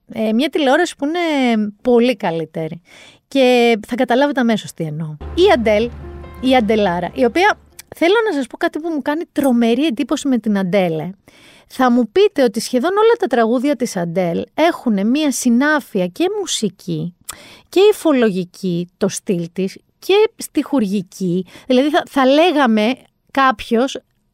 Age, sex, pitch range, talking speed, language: 40-59, female, 200-285 Hz, 145 wpm, Greek